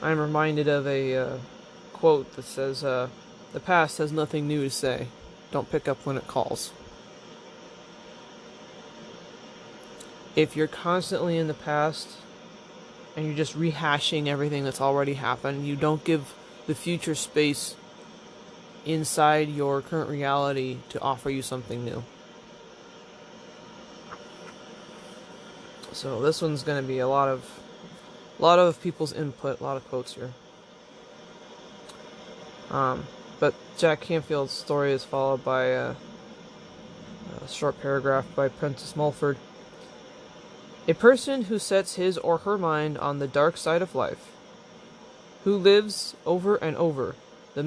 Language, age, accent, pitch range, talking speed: English, 20-39, American, 140-170 Hz, 130 wpm